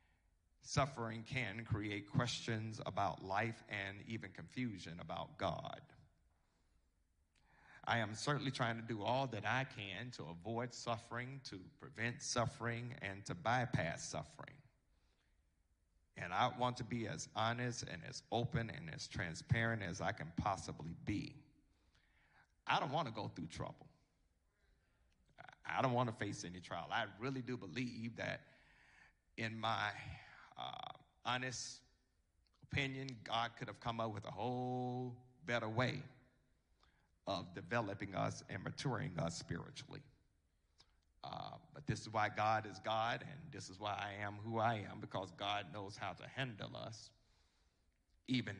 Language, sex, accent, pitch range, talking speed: English, male, American, 95-125 Hz, 140 wpm